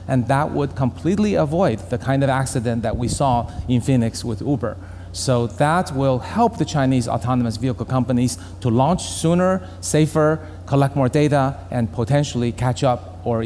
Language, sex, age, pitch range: English, male, 30-49, 110-135 Hz